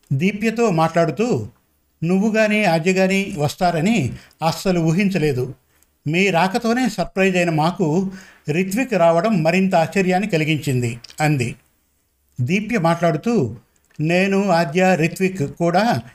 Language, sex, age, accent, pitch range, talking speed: Telugu, male, 50-69, native, 150-190 Hz, 95 wpm